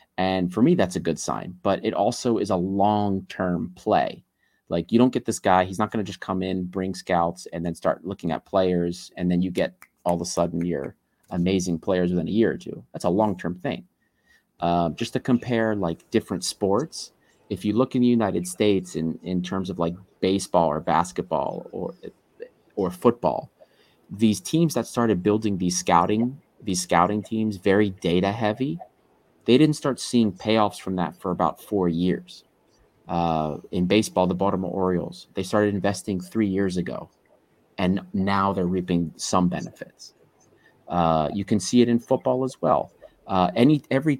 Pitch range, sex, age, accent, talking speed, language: 90-110 Hz, male, 30-49, American, 180 wpm, English